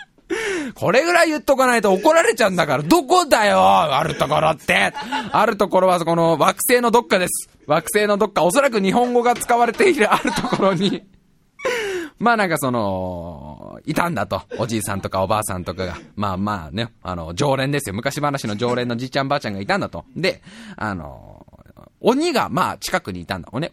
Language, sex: Japanese, male